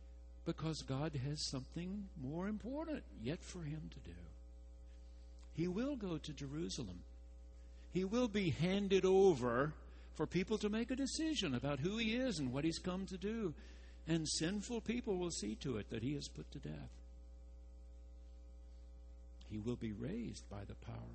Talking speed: 160 wpm